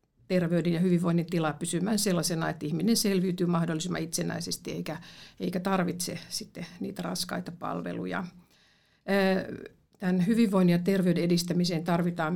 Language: Finnish